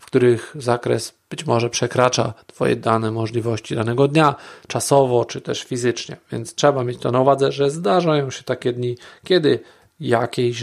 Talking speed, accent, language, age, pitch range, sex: 160 wpm, native, Polish, 40-59, 115-145 Hz, male